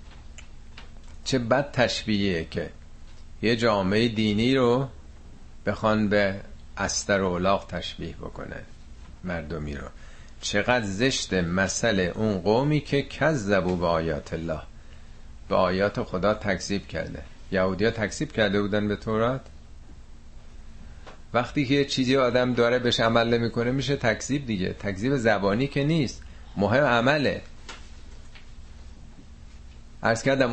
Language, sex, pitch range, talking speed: Persian, male, 85-115 Hz, 110 wpm